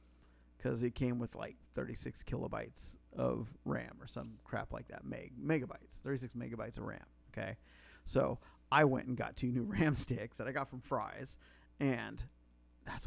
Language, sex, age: English, male, 30-49